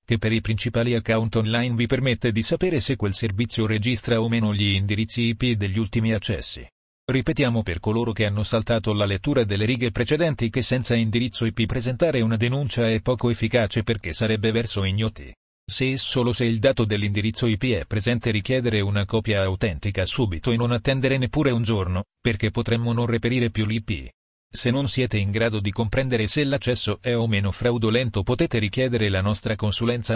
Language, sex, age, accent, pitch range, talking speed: Italian, male, 40-59, native, 105-120 Hz, 185 wpm